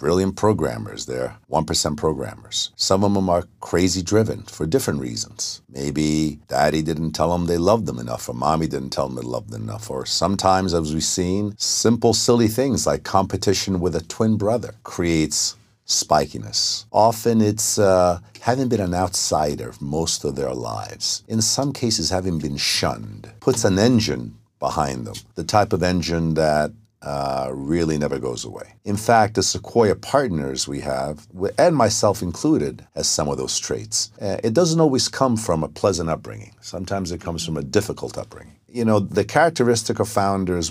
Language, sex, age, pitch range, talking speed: Italian, male, 50-69, 80-110 Hz, 170 wpm